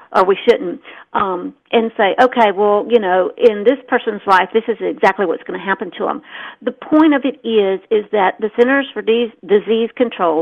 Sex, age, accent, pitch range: female, 50-69, American, 195-250 Hz